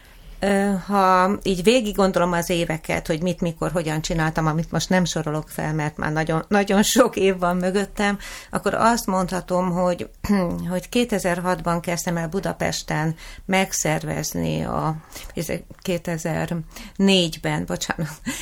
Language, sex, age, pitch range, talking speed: Hungarian, female, 30-49, 160-185 Hz, 115 wpm